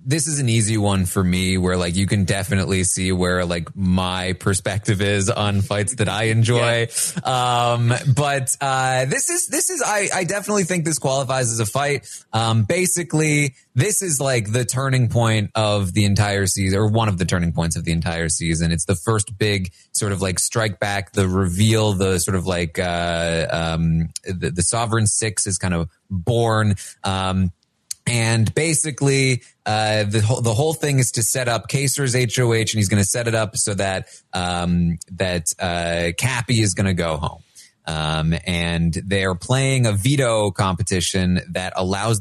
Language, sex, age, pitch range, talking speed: English, male, 30-49, 90-120 Hz, 185 wpm